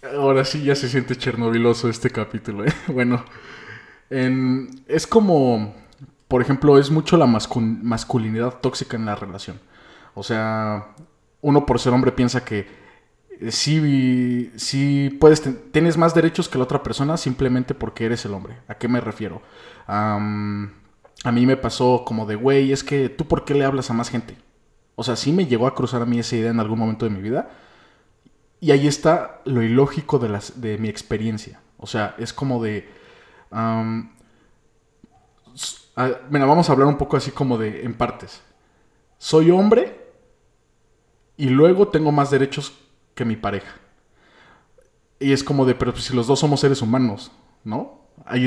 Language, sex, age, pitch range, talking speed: Spanish, male, 20-39, 115-140 Hz, 170 wpm